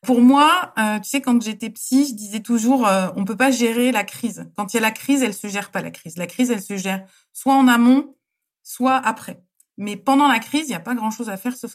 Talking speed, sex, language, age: 265 wpm, female, French, 20-39